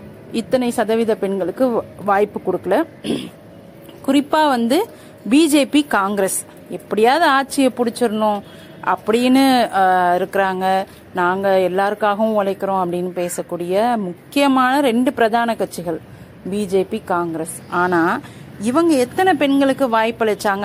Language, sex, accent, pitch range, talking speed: Tamil, female, native, 190-260 Hz, 85 wpm